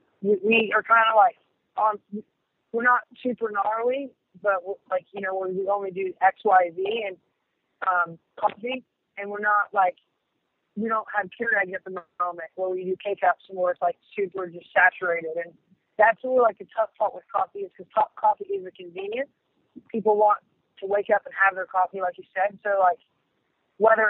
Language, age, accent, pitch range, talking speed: English, 30-49, American, 185-215 Hz, 190 wpm